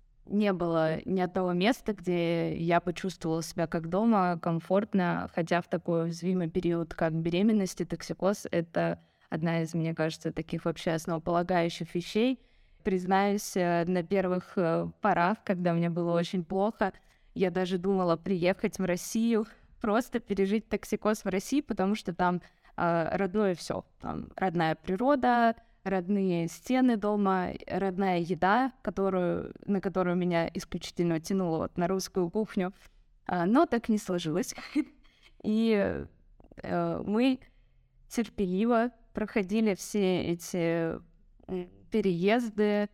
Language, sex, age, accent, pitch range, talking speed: Russian, female, 20-39, native, 170-205 Hz, 115 wpm